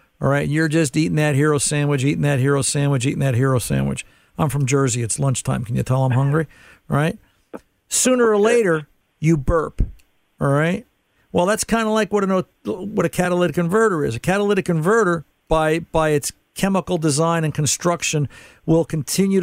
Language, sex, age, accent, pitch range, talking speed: English, male, 50-69, American, 140-165 Hz, 180 wpm